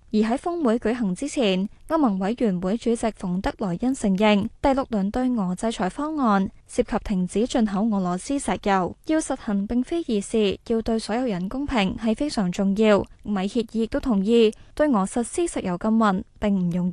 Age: 10-29